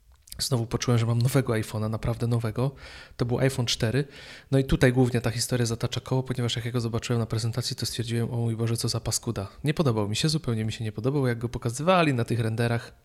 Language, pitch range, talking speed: Polish, 110-130 Hz, 230 wpm